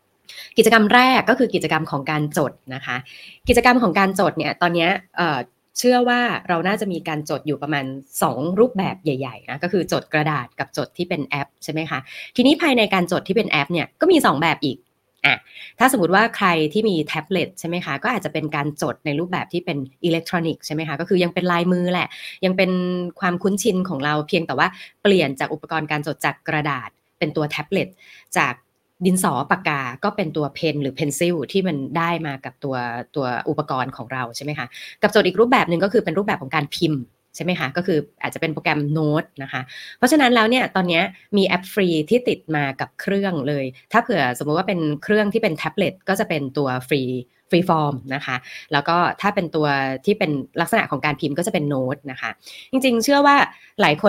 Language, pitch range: Thai, 145-190 Hz